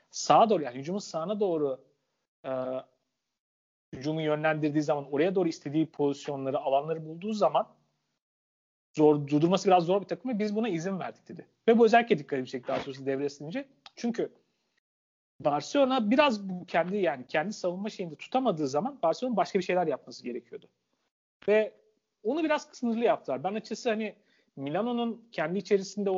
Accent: native